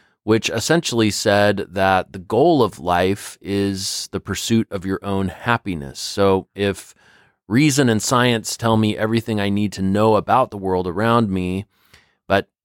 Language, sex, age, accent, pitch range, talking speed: English, male, 30-49, American, 95-110 Hz, 155 wpm